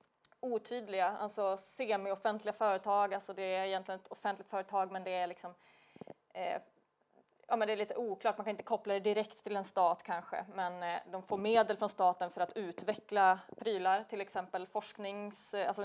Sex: female